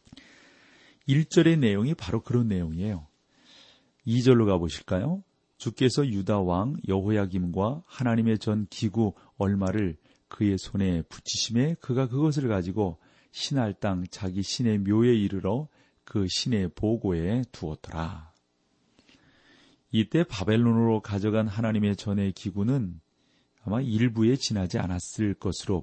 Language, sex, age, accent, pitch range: Korean, male, 40-59, native, 90-115 Hz